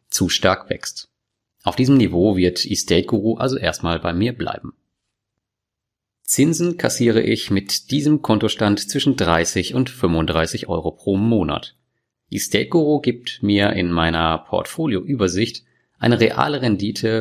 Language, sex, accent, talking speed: German, male, German, 120 wpm